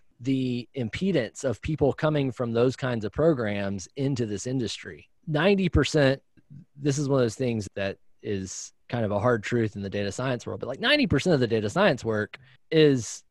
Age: 20-39